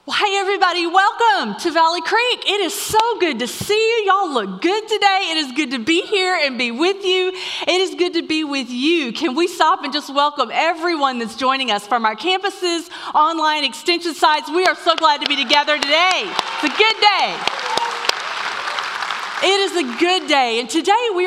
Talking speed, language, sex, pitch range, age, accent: 200 wpm, English, female, 255-365 Hz, 40-59, American